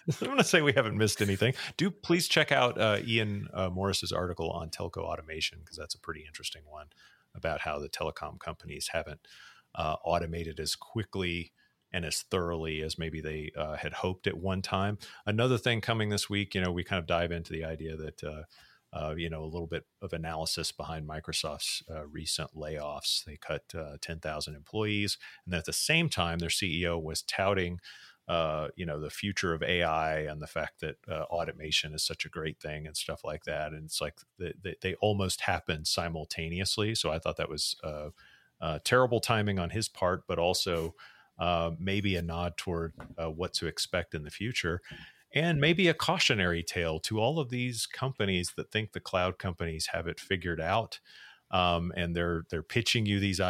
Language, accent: English, American